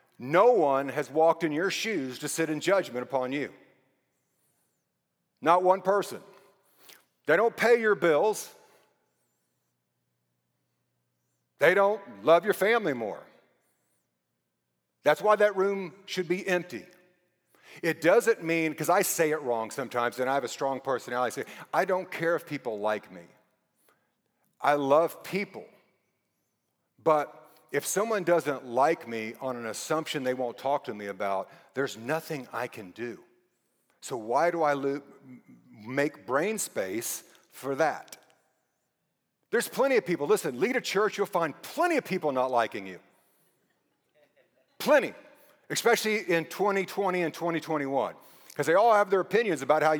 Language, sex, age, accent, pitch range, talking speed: English, male, 50-69, American, 125-185 Hz, 145 wpm